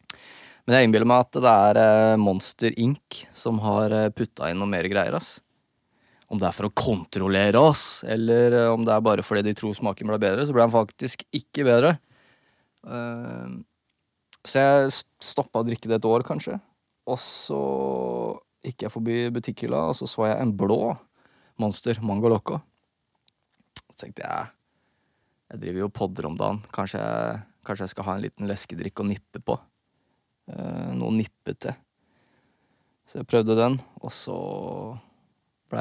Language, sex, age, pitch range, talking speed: English, male, 20-39, 95-120 Hz, 155 wpm